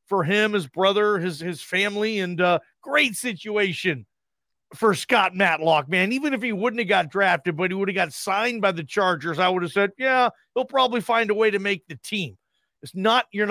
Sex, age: male, 40-59